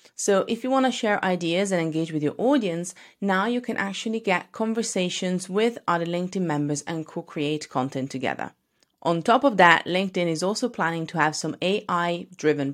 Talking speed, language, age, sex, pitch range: 180 wpm, English, 30-49, female, 160-220 Hz